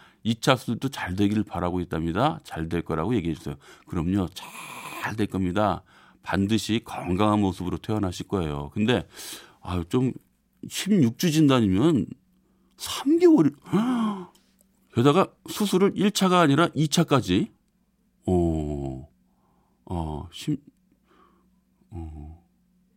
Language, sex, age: Korean, male, 40-59